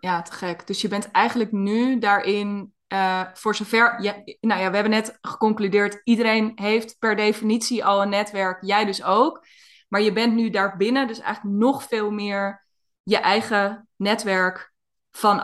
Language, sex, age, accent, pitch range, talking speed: Dutch, female, 20-39, Dutch, 190-225 Hz, 165 wpm